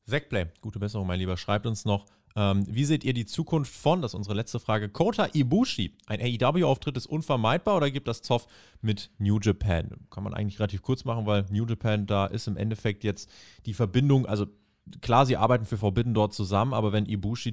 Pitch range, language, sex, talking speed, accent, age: 100-120 Hz, German, male, 205 wpm, German, 30-49